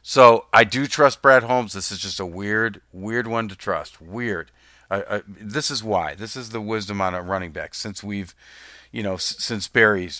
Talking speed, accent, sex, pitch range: 210 wpm, American, male, 90-110 Hz